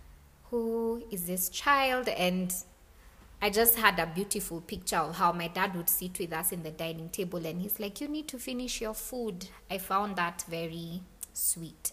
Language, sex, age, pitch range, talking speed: English, female, 20-39, 165-210 Hz, 185 wpm